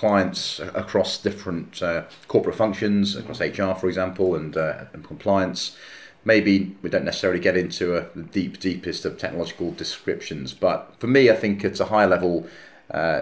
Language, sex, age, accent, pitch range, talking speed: English, male, 30-49, British, 80-95 Hz, 165 wpm